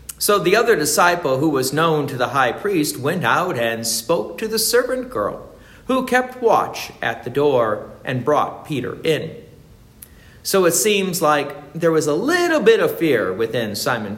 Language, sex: English, male